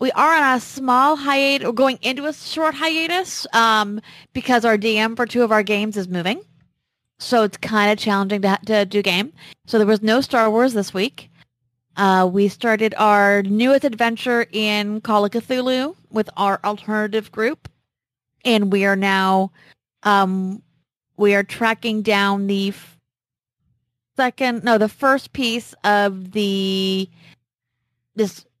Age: 30-49